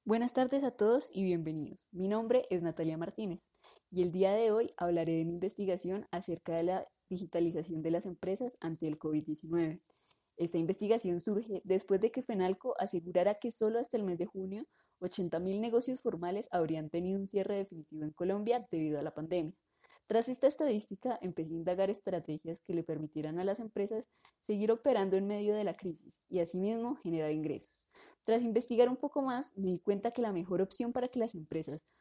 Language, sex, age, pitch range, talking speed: Spanish, female, 20-39, 170-220 Hz, 185 wpm